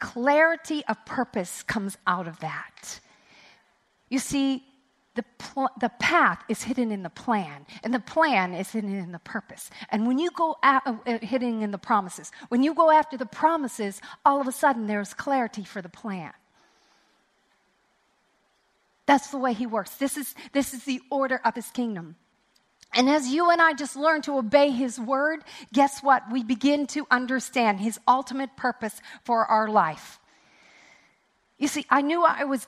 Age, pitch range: 40-59, 230-295 Hz